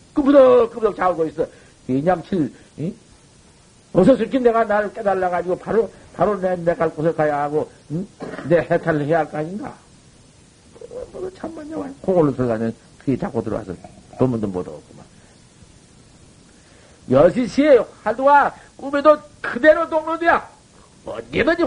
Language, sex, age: Korean, male, 50-69